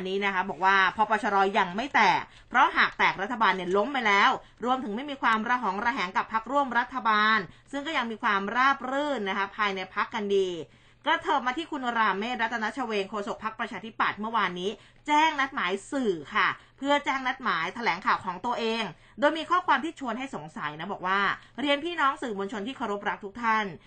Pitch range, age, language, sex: 205-270 Hz, 20-39, Thai, female